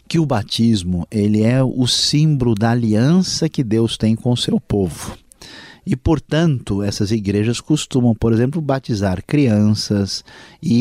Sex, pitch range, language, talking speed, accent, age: male, 100-135 Hz, Portuguese, 140 wpm, Brazilian, 50-69